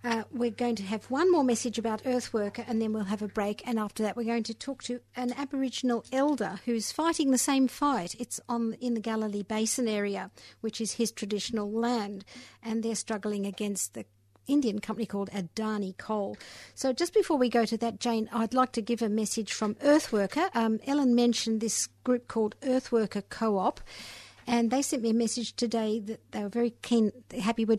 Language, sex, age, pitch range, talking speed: English, female, 50-69, 210-245 Hz, 200 wpm